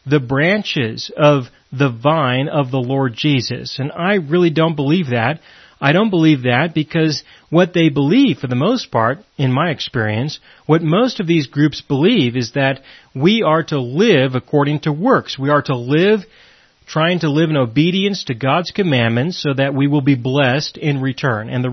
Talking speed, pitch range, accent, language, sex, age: 185 wpm, 135-185 Hz, American, English, male, 40-59